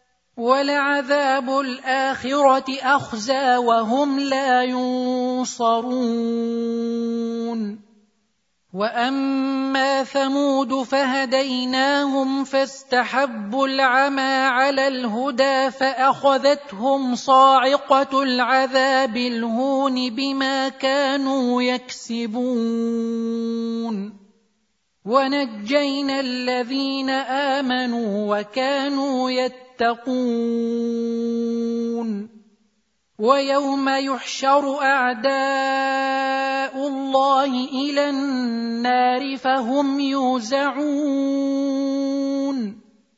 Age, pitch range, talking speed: 30-49, 235-270 Hz, 45 wpm